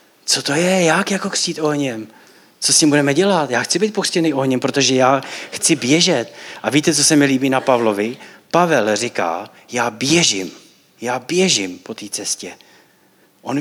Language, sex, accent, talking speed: Czech, male, native, 175 wpm